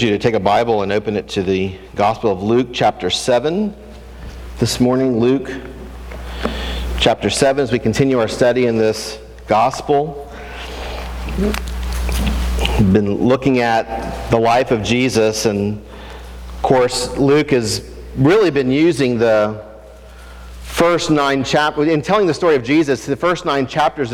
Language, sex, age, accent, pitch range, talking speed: English, male, 50-69, American, 95-145 Hz, 145 wpm